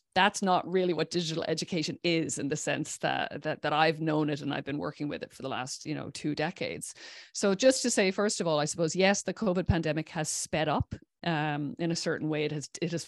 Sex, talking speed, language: female, 250 wpm, English